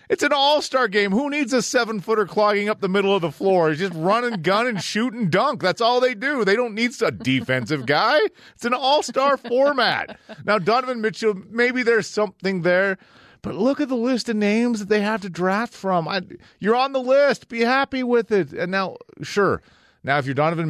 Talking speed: 210 wpm